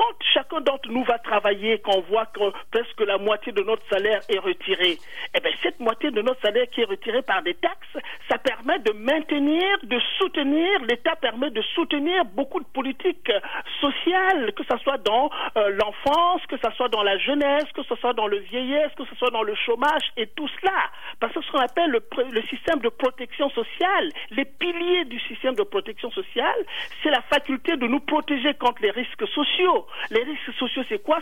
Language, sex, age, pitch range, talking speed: French, male, 50-69, 235-340 Hz, 200 wpm